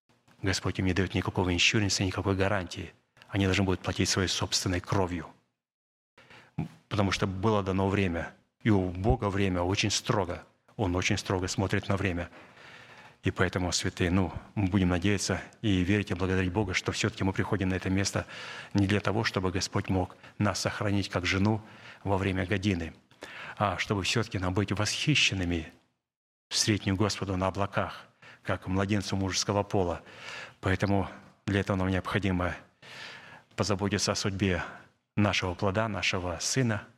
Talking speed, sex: 150 wpm, male